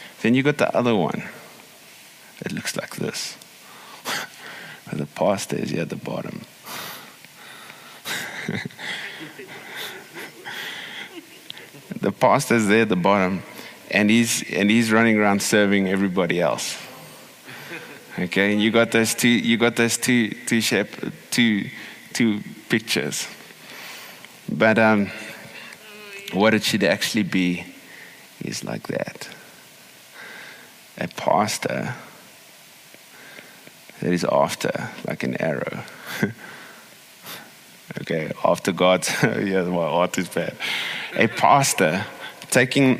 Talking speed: 105 wpm